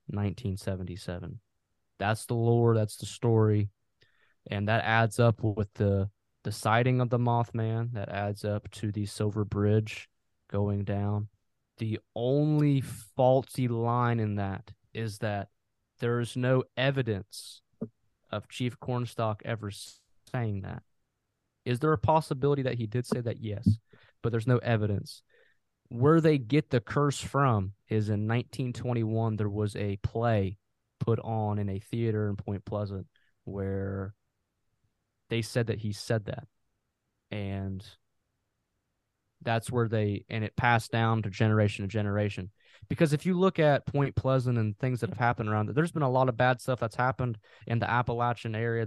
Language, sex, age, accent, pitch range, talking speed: English, male, 20-39, American, 105-125 Hz, 155 wpm